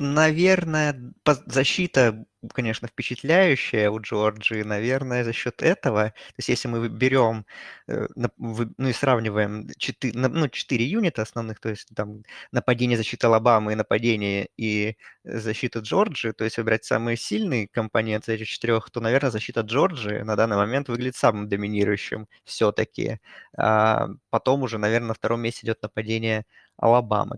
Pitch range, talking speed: 110-130 Hz, 135 wpm